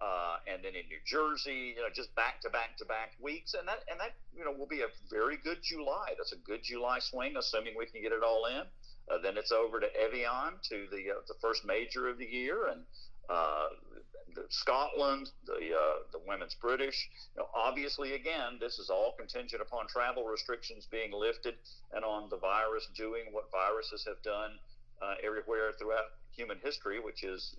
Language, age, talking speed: English, 50-69, 200 wpm